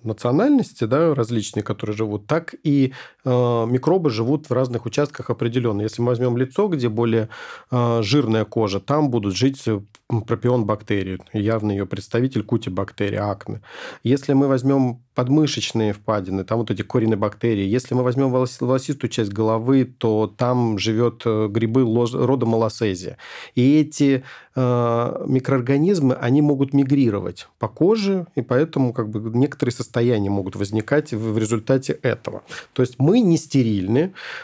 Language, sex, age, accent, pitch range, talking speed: Russian, male, 40-59, native, 110-135 Hz, 140 wpm